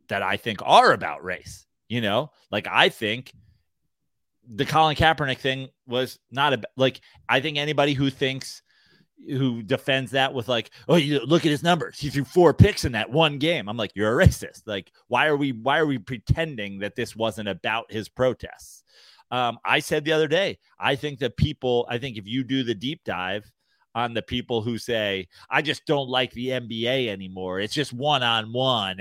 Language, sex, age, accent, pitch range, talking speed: English, male, 30-49, American, 110-135 Hz, 195 wpm